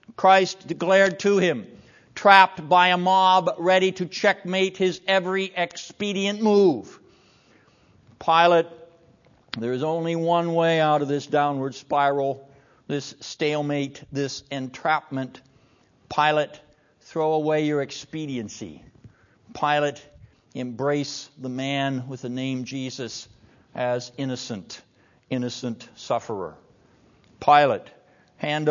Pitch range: 120-155 Hz